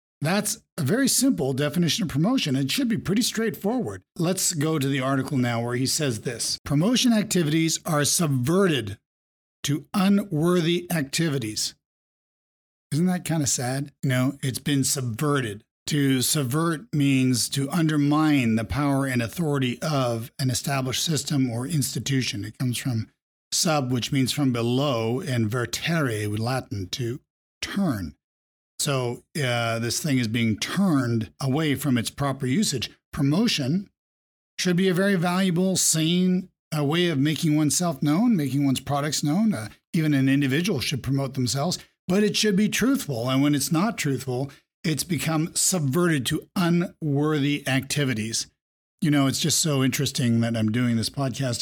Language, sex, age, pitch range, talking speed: English, male, 50-69, 125-160 Hz, 150 wpm